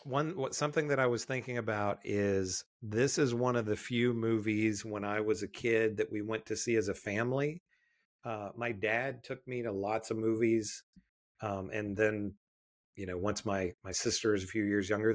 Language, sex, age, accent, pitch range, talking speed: English, male, 40-59, American, 100-120 Hz, 205 wpm